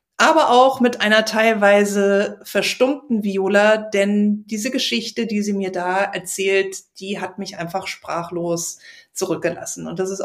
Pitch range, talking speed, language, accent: 195-245 Hz, 140 wpm, German, German